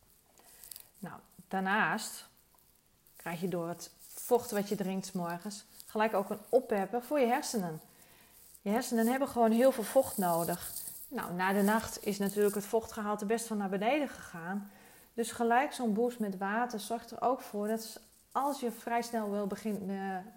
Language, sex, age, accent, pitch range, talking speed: Dutch, female, 30-49, Dutch, 195-235 Hz, 170 wpm